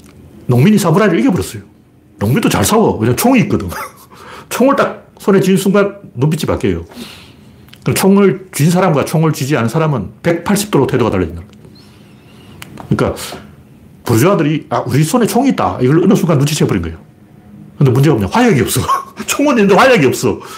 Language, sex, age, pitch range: Korean, male, 40-59, 130-215 Hz